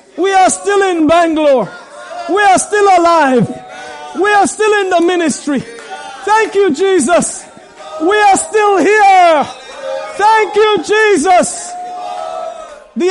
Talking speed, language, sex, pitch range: 120 wpm, English, male, 290-365 Hz